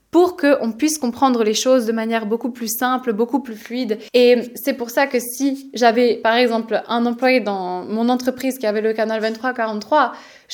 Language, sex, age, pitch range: Spanish, female, 20-39, 225-275 Hz